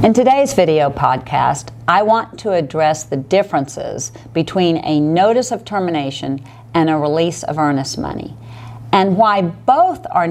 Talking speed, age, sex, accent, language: 145 wpm, 50-69, female, American, English